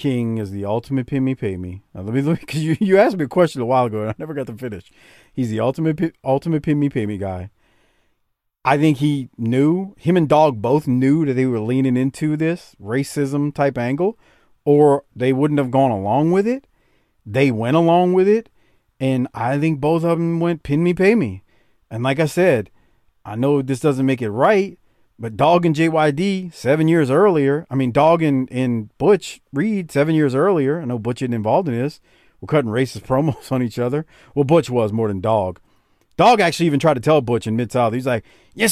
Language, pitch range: English, 125-175 Hz